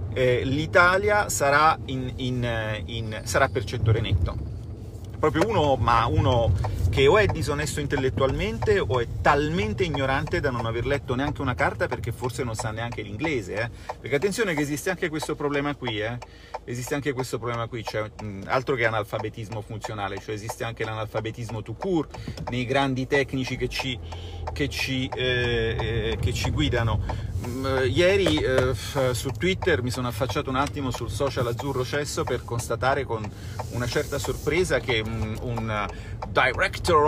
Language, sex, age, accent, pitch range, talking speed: Italian, male, 40-59, native, 110-135 Hz, 150 wpm